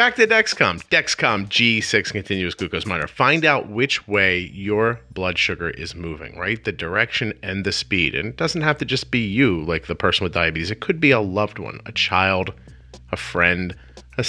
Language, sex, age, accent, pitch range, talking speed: English, male, 30-49, American, 85-125 Hz, 195 wpm